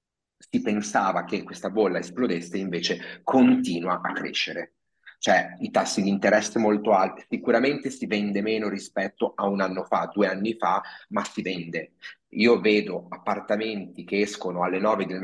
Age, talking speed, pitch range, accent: 30-49, 160 wpm, 95-115 Hz, native